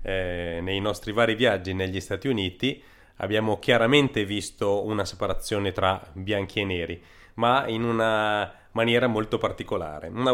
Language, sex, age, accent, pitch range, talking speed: Italian, male, 30-49, native, 90-115 Hz, 140 wpm